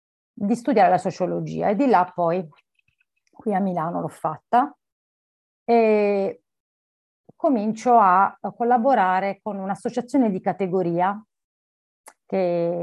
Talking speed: 105 wpm